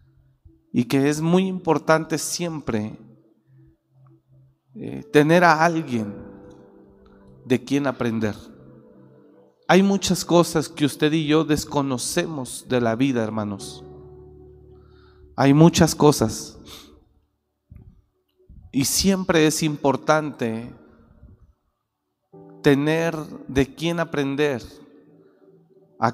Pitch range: 110-160 Hz